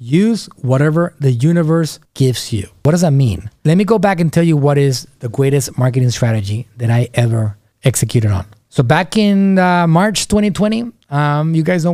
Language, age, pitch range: English, 30-49, 120-155 Hz